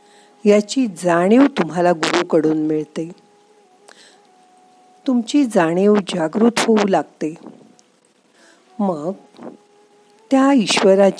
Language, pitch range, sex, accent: Marathi, 170-250 Hz, female, native